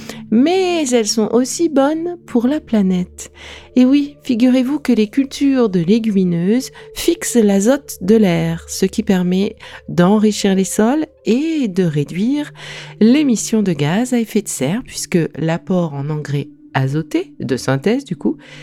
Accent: French